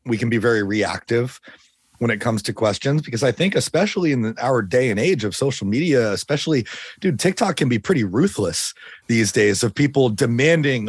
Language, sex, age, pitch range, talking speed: English, male, 30-49, 110-145 Hz, 185 wpm